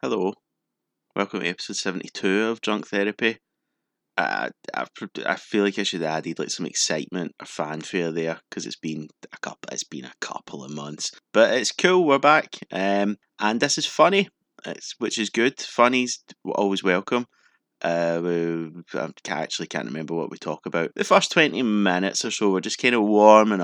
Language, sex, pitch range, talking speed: English, male, 80-110 Hz, 185 wpm